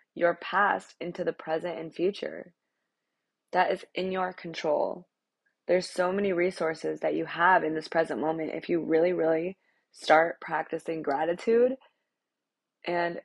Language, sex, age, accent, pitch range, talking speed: English, female, 20-39, American, 160-185 Hz, 140 wpm